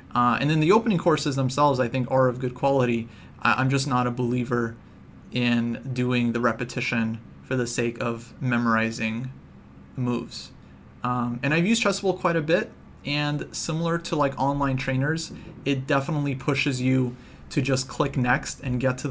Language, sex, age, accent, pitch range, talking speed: English, male, 30-49, American, 120-140 Hz, 165 wpm